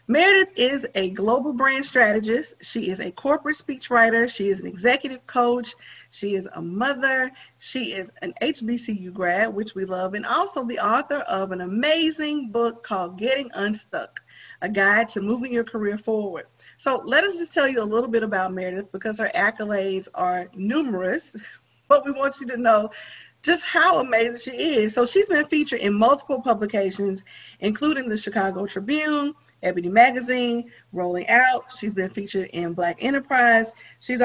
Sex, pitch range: female, 195-265 Hz